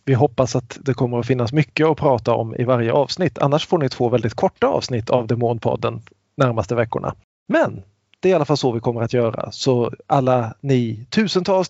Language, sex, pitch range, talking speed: Swedish, male, 120-150 Hz, 205 wpm